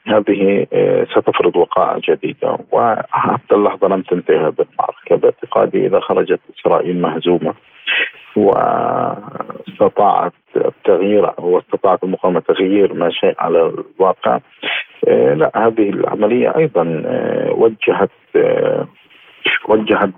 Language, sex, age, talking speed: Arabic, male, 40-59, 90 wpm